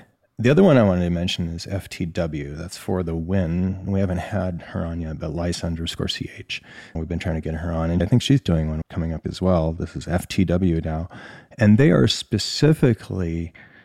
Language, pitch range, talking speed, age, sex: English, 85-125 Hz, 210 wpm, 40-59, male